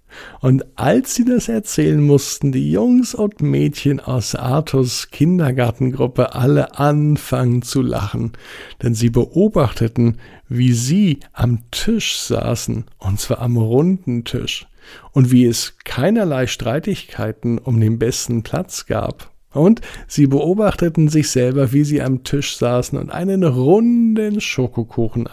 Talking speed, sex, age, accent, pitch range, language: 130 wpm, male, 50-69, German, 120-155 Hz, German